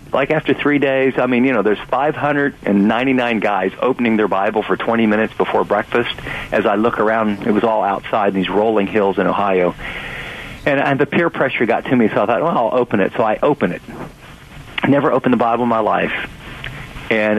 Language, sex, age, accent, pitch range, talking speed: English, male, 50-69, American, 110-145 Hz, 210 wpm